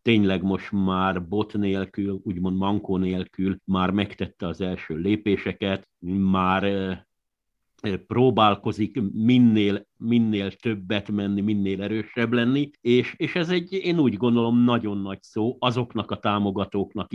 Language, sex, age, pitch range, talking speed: Hungarian, male, 50-69, 95-110 Hz, 115 wpm